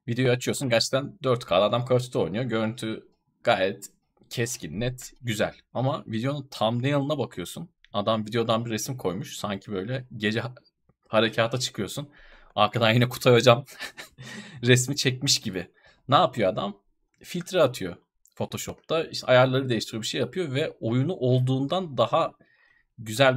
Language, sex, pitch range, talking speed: Turkish, male, 110-135 Hz, 135 wpm